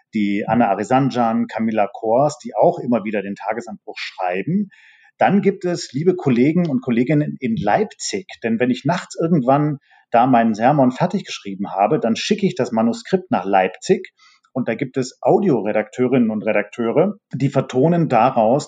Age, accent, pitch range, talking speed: 40-59, German, 120-170 Hz, 155 wpm